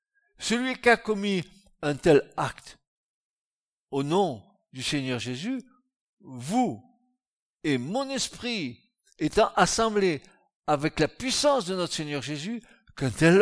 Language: French